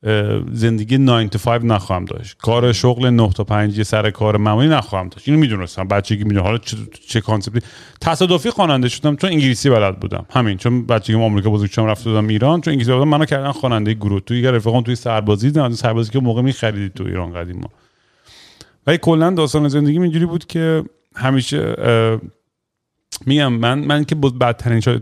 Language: Persian